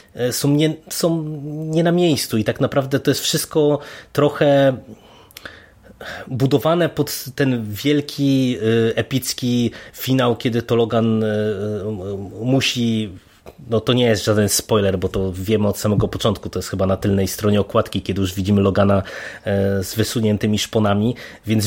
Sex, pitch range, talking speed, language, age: male, 110-135 Hz, 135 wpm, Polish, 20-39